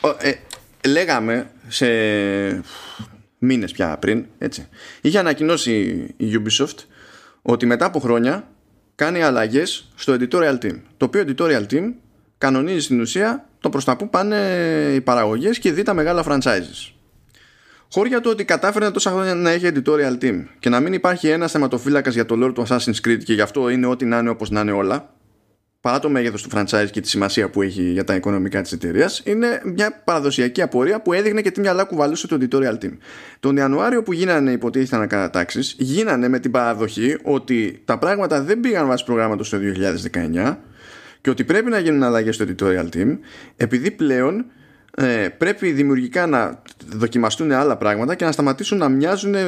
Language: Greek